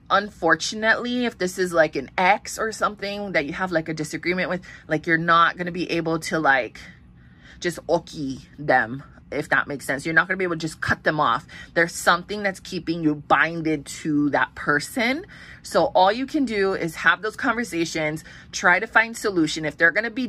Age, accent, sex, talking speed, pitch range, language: 20-39, American, female, 205 wpm, 150-185 Hz, English